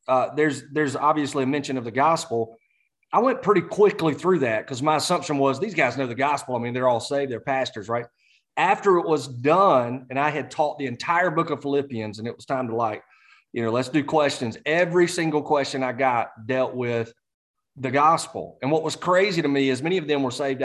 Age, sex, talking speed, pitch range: 30-49, male, 225 wpm, 120-150 Hz